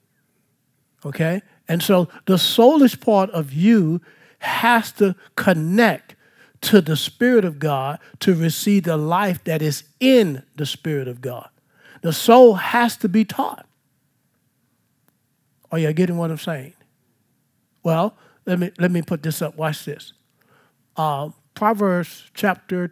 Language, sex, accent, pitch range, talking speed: English, male, American, 150-200 Hz, 135 wpm